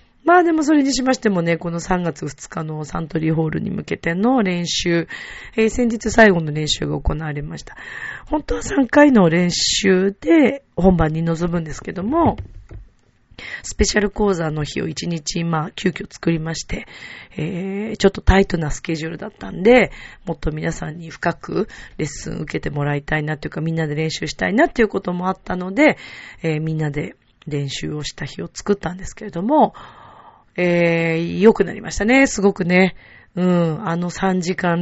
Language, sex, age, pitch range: Japanese, female, 40-59, 160-200 Hz